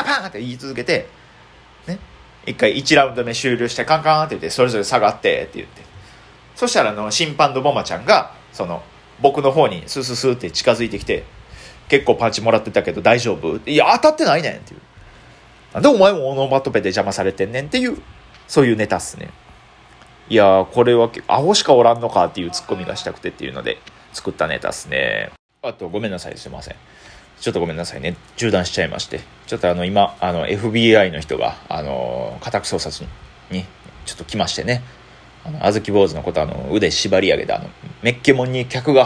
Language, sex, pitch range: Japanese, male, 100-140 Hz